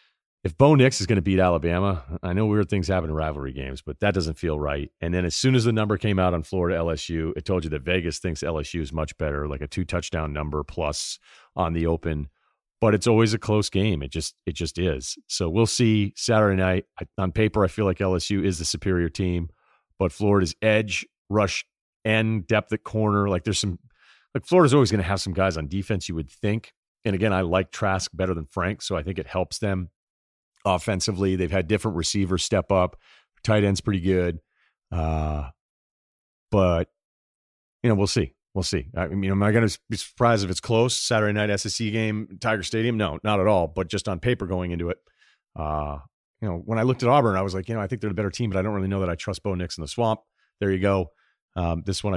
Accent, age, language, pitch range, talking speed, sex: American, 40-59, English, 85-105 Hz, 230 wpm, male